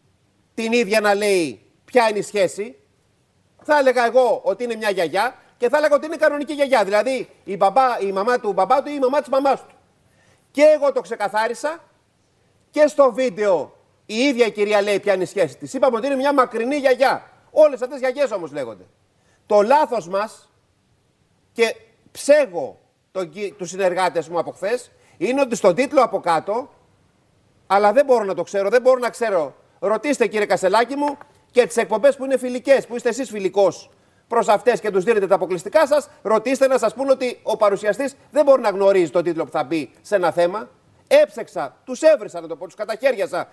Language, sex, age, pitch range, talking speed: Greek, male, 30-49, 195-270 Hz, 195 wpm